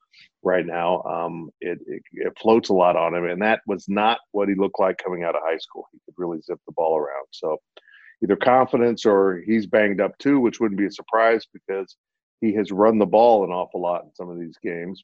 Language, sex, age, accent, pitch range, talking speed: English, male, 50-69, American, 90-120 Hz, 230 wpm